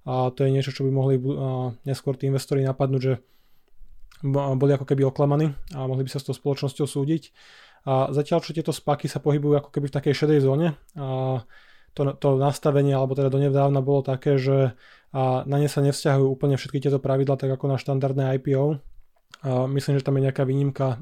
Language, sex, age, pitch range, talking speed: Slovak, male, 20-39, 135-145 Hz, 195 wpm